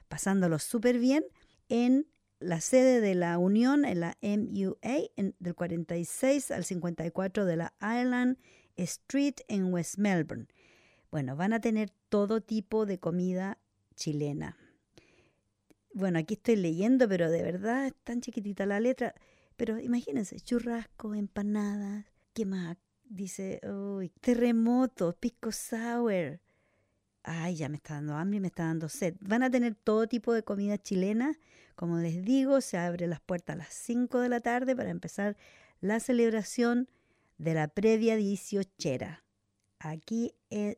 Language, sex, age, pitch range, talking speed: English, female, 50-69, 175-235 Hz, 140 wpm